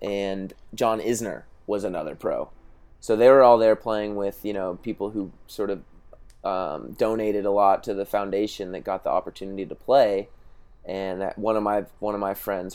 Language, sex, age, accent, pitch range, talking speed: English, male, 20-39, American, 100-110 Hz, 195 wpm